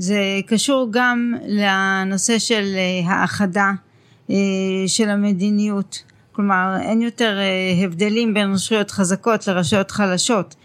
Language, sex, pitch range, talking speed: Hebrew, female, 185-230 Hz, 95 wpm